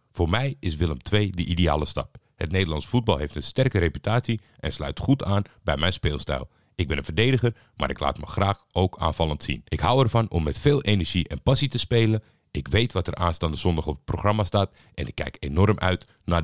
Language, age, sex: Dutch, 50-69, male